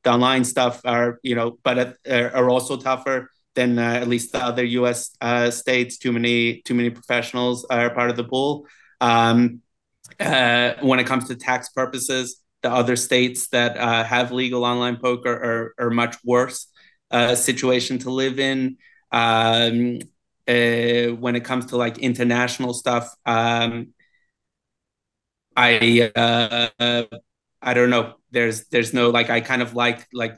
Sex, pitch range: male, 120-125 Hz